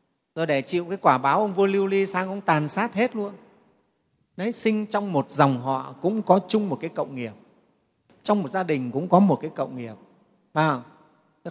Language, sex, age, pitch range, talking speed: Vietnamese, male, 30-49, 135-175 Hz, 215 wpm